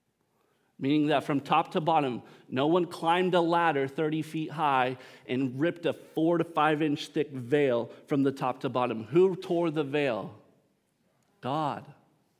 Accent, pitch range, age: American, 135-175 Hz, 40-59